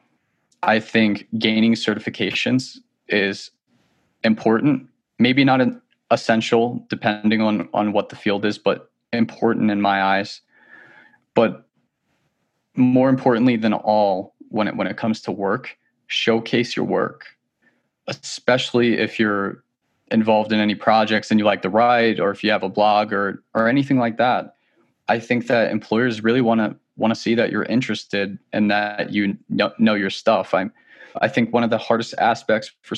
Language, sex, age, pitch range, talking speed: English, male, 20-39, 105-115 Hz, 160 wpm